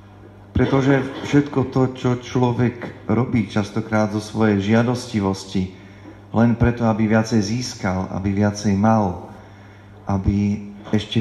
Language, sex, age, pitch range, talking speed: Slovak, male, 40-59, 100-115 Hz, 105 wpm